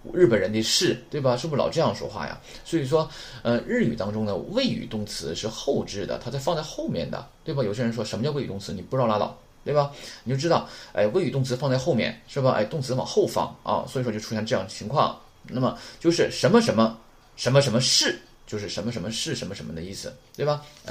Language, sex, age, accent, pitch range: Chinese, male, 20-39, native, 110-150 Hz